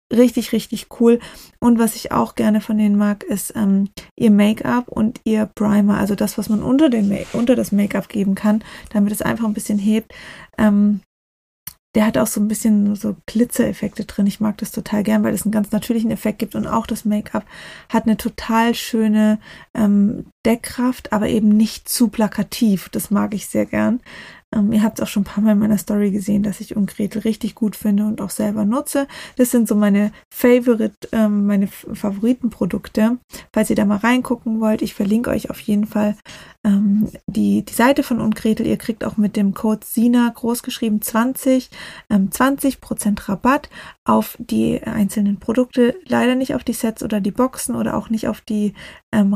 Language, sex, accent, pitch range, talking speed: German, female, German, 205-235 Hz, 185 wpm